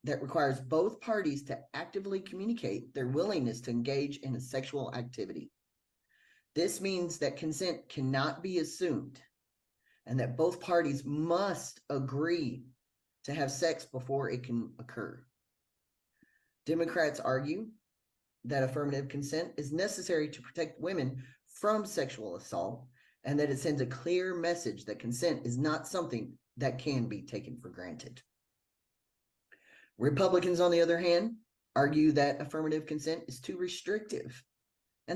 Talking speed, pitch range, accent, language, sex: 135 wpm, 130-170 Hz, American, English, male